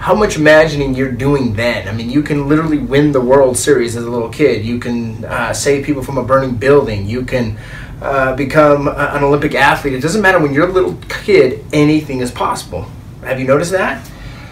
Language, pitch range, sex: English, 125-150 Hz, male